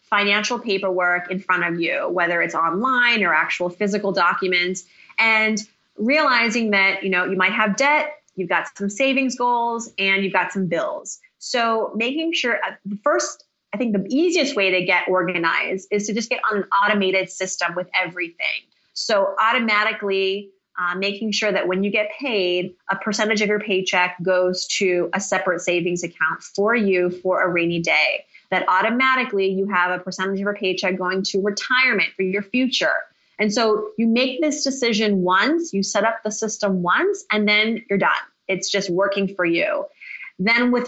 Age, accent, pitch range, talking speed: 30-49, American, 185-225 Hz, 180 wpm